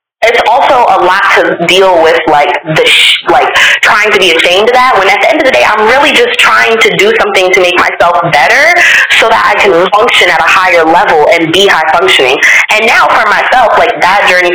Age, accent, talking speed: 20-39, American, 225 wpm